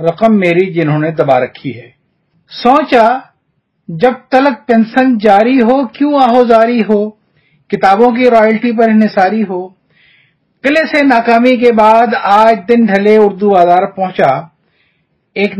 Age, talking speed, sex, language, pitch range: 50-69, 125 wpm, male, Urdu, 165-235 Hz